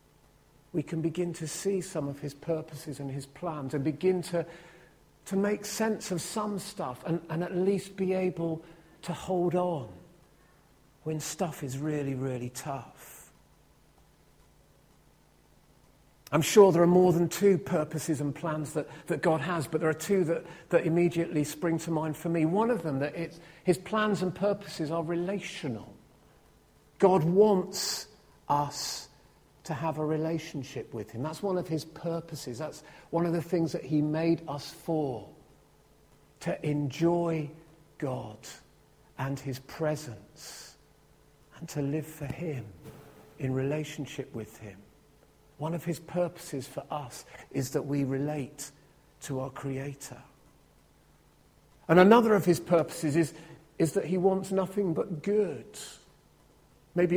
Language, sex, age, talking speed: English, male, 50-69, 145 wpm